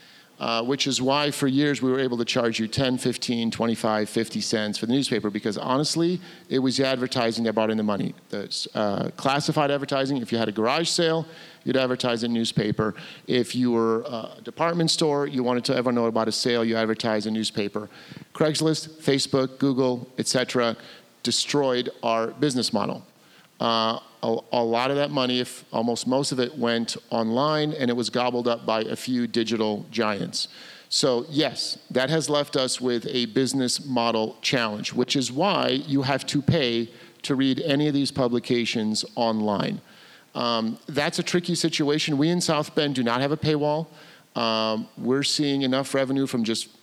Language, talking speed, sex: English, 180 wpm, male